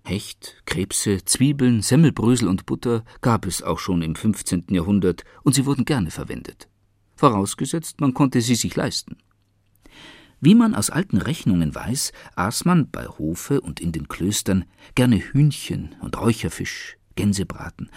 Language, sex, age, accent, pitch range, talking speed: German, male, 50-69, German, 100-135 Hz, 145 wpm